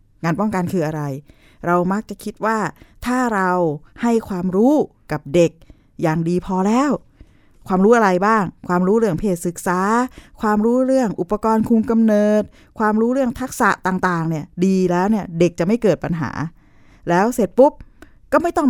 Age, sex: 20-39, female